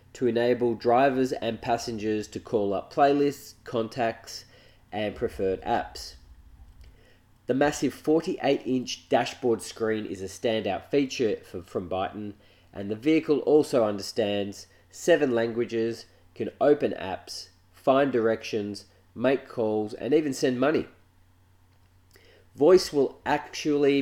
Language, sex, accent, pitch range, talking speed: English, male, Australian, 90-130 Hz, 110 wpm